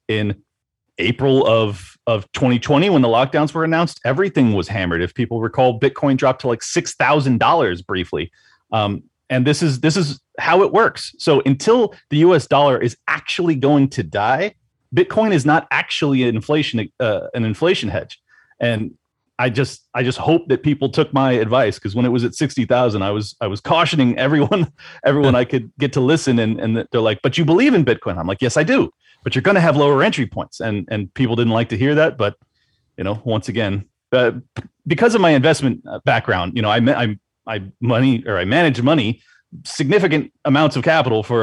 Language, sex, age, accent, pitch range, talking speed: English, male, 30-49, American, 115-145 Hz, 195 wpm